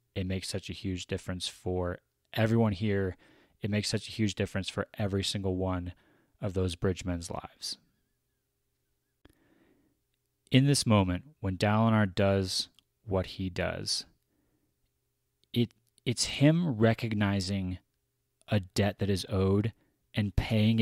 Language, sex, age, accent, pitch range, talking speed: English, male, 30-49, American, 95-125 Hz, 125 wpm